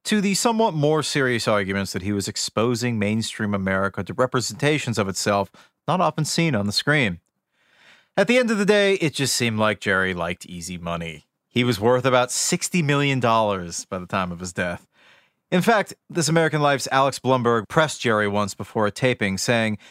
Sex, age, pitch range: male, 40-59, 105-160 Hz